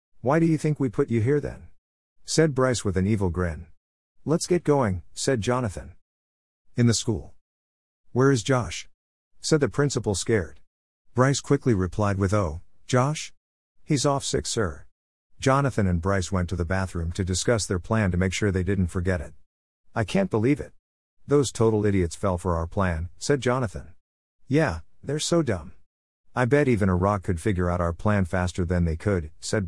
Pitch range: 85-120 Hz